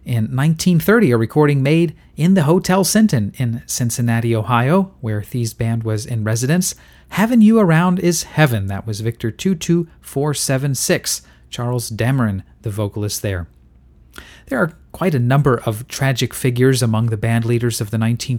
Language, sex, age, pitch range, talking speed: English, male, 40-59, 110-150 Hz, 150 wpm